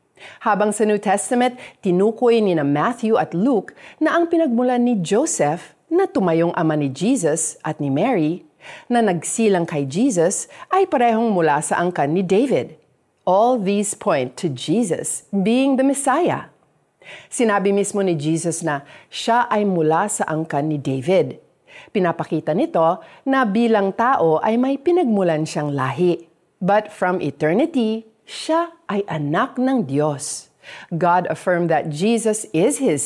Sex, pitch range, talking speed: female, 160-230 Hz, 140 wpm